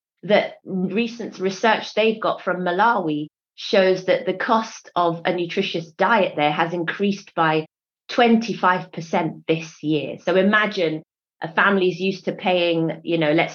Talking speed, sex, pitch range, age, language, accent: 140 wpm, female, 155-185 Hz, 30-49, English, British